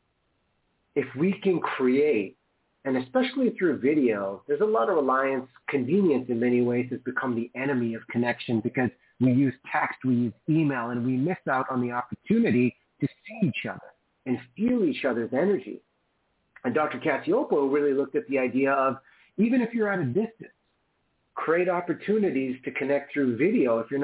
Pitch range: 125-175 Hz